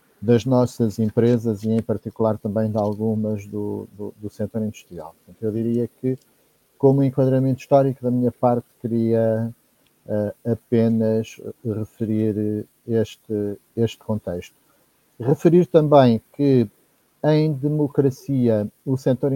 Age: 50-69